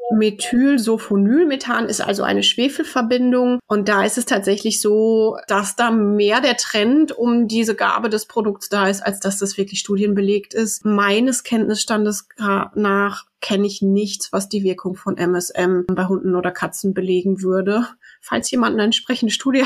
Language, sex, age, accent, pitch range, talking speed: German, female, 30-49, German, 195-235 Hz, 155 wpm